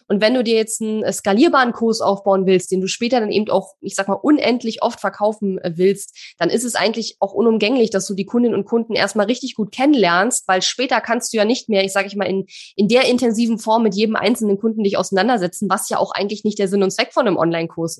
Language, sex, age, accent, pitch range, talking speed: German, female, 20-39, German, 195-230 Hz, 245 wpm